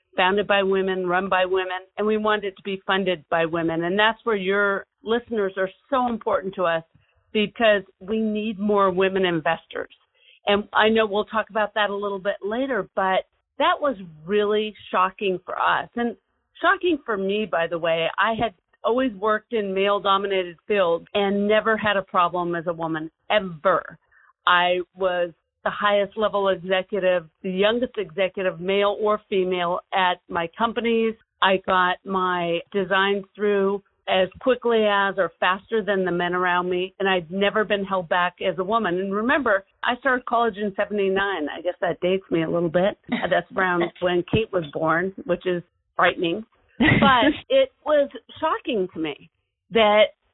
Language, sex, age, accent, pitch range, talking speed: English, female, 50-69, American, 180-215 Hz, 170 wpm